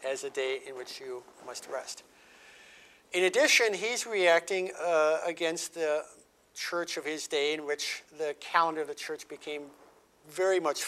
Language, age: English, 50-69